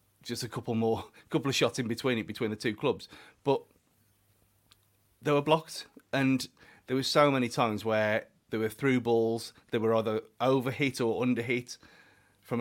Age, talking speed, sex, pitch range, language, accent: 30-49, 185 wpm, male, 110-145 Hz, English, British